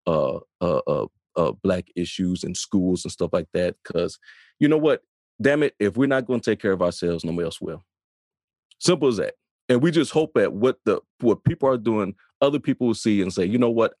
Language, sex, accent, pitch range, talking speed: English, male, American, 95-130 Hz, 230 wpm